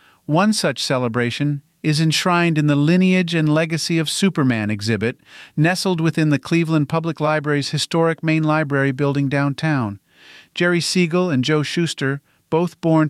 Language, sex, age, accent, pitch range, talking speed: English, male, 50-69, American, 135-160 Hz, 140 wpm